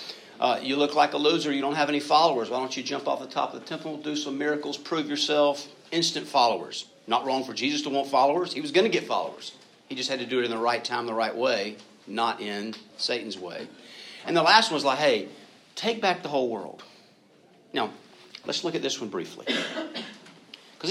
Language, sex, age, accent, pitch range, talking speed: English, male, 50-69, American, 115-160 Hz, 225 wpm